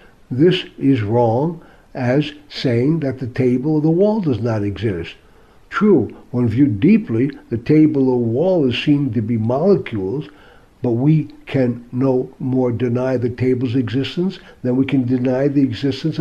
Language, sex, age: English, male, 60-79